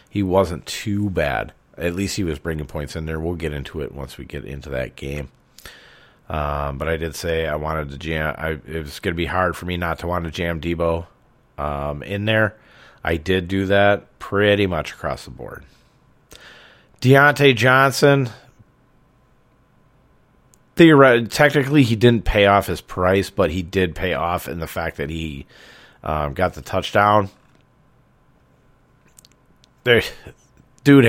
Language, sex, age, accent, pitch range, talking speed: English, male, 40-59, American, 80-105 Hz, 155 wpm